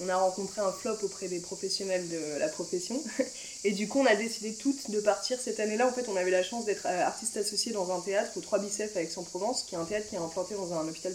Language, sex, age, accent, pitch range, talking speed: French, female, 20-39, French, 175-210 Hz, 270 wpm